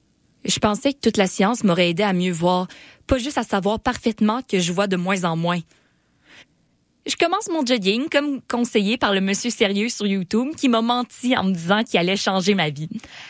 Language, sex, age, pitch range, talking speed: French, female, 20-39, 180-225 Hz, 210 wpm